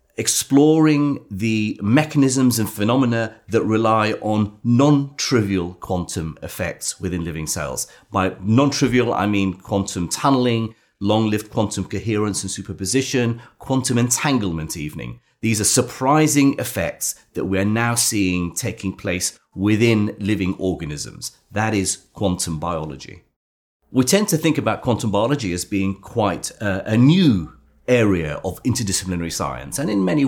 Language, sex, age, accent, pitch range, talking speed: English, male, 30-49, British, 95-130 Hz, 130 wpm